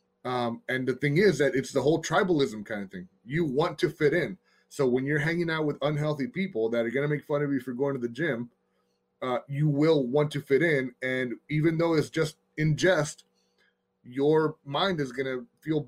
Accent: American